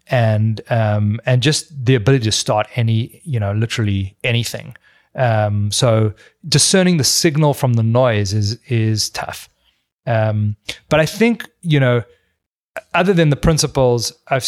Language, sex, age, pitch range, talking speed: English, male, 30-49, 110-140 Hz, 145 wpm